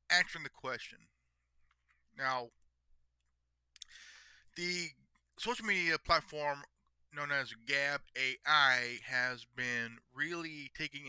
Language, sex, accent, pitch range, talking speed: English, male, American, 110-145 Hz, 85 wpm